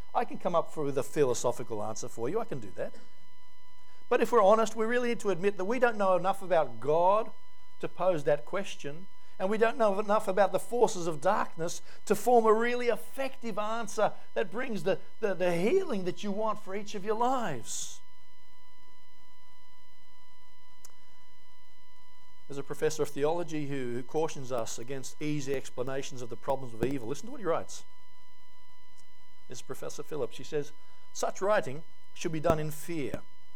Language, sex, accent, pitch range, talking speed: English, male, Australian, 145-195 Hz, 175 wpm